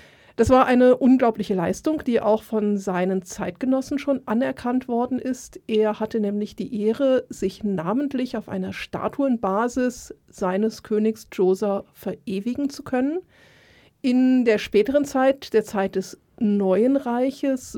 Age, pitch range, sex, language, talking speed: 40-59, 205-255 Hz, female, German, 130 wpm